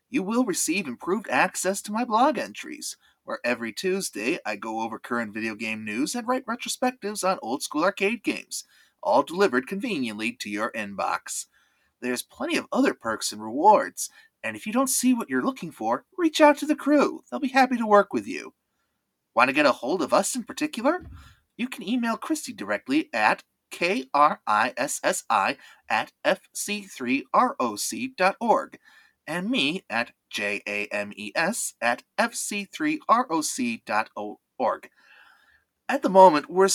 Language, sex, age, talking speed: English, male, 30-49, 145 wpm